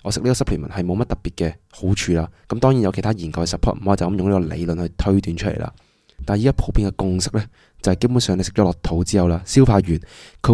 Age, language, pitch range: 20-39, Chinese, 90-110 Hz